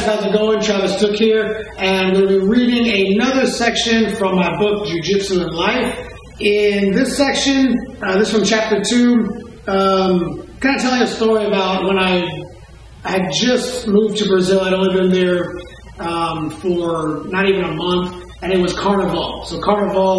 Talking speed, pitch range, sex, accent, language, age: 180 wpm, 175-215 Hz, male, American, English, 30-49